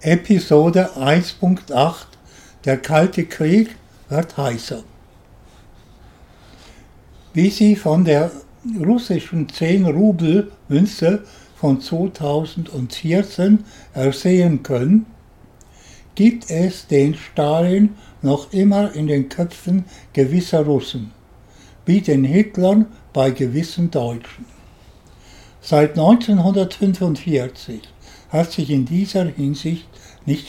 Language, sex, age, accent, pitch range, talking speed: German, male, 60-79, German, 135-185 Hz, 85 wpm